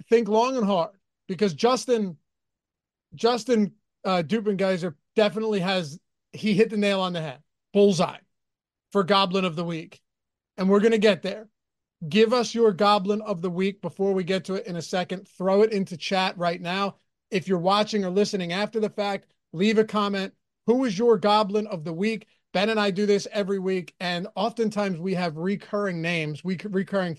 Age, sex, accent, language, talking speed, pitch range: 30-49, male, American, English, 185 wpm, 180-210 Hz